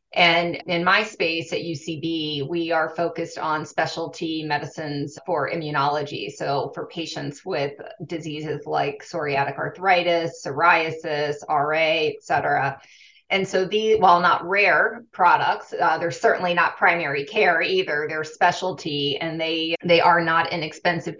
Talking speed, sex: 135 wpm, female